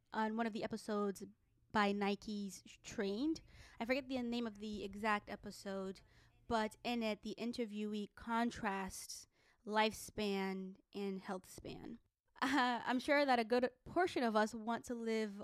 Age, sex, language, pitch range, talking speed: 20-39, female, English, 200-240 Hz, 150 wpm